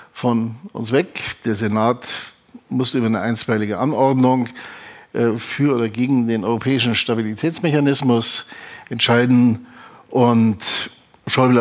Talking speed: 105 wpm